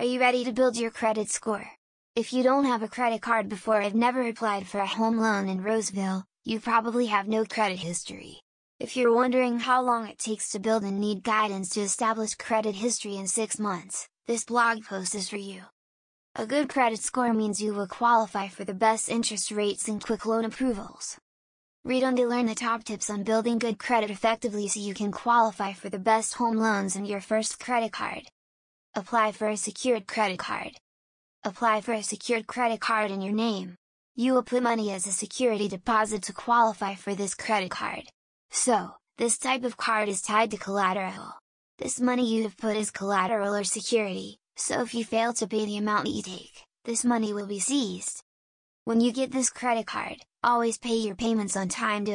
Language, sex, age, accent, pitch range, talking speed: English, female, 10-29, American, 205-235 Hz, 200 wpm